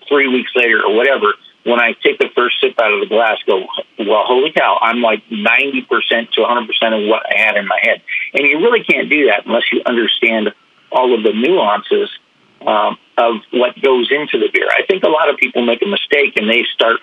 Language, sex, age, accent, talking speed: English, male, 50-69, American, 220 wpm